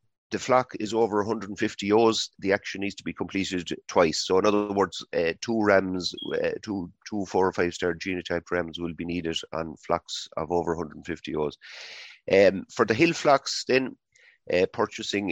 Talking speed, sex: 180 wpm, male